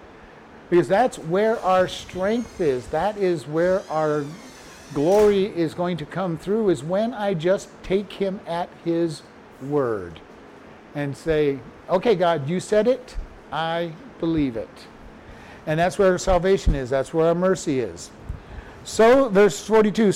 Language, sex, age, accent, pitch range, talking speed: English, male, 50-69, American, 160-205 Hz, 145 wpm